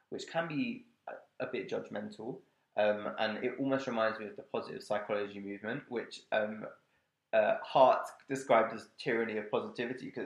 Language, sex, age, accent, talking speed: English, male, 20-39, British, 160 wpm